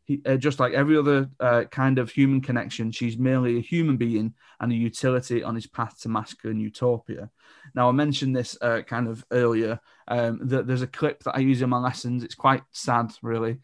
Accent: British